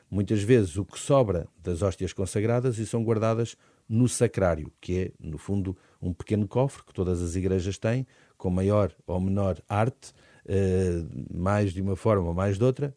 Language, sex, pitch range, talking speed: Portuguese, male, 90-115 Hz, 175 wpm